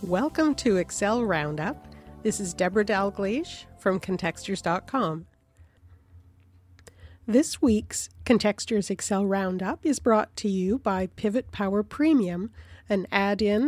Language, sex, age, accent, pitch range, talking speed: English, female, 50-69, American, 185-220 Hz, 110 wpm